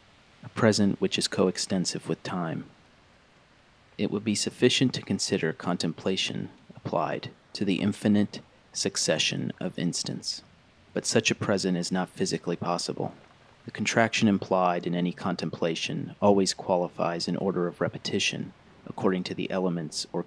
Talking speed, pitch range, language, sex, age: 135 wpm, 90-105 Hz, English, male, 30-49